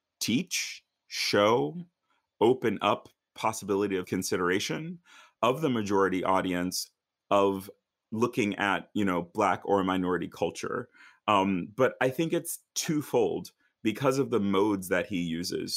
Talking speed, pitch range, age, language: 125 wpm, 95-115 Hz, 30-49, English